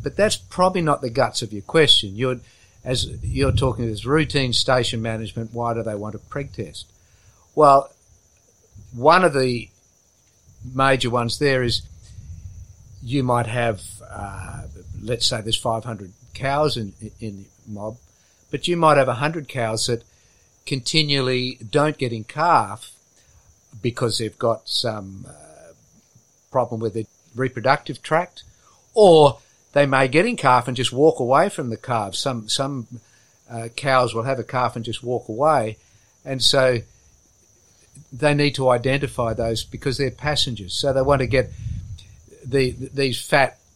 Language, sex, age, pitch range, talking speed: English, male, 50-69, 110-135 Hz, 155 wpm